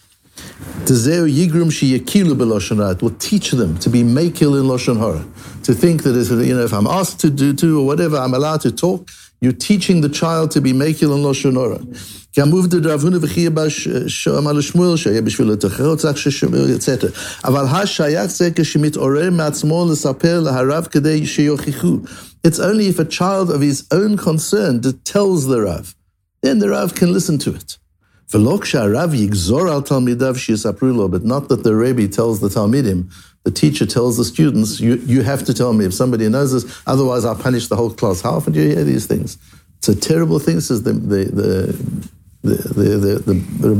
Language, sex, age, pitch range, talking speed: English, male, 60-79, 110-155 Hz, 140 wpm